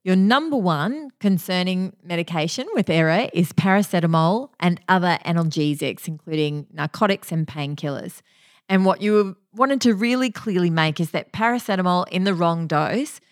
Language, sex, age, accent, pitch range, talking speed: English, female, 30-49, Australian, 160-190 Hz, 140 wpm